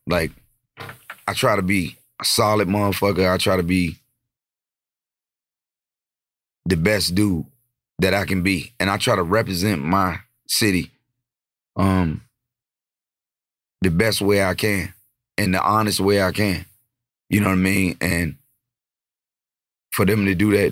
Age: 30-49